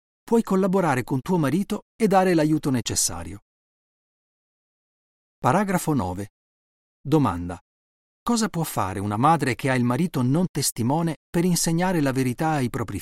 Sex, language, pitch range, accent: male, Italian, 110-160 Hz, native